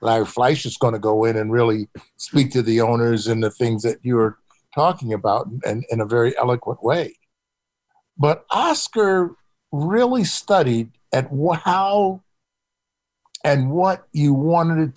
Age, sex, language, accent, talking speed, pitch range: 60-79, male, English, American, 150 wpm, 120-160 Hz